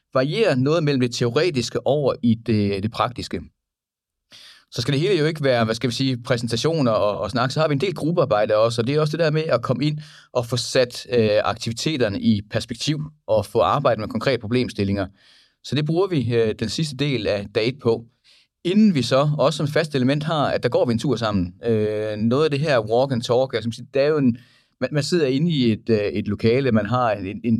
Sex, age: male, 30-49